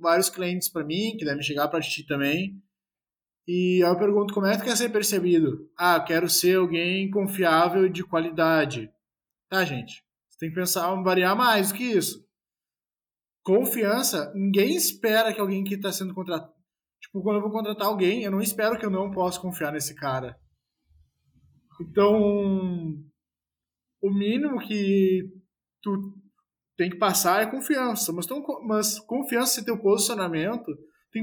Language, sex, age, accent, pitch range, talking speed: Portuguese, male, 20-39, Brazilian, 165-215 Hz, 160 wpm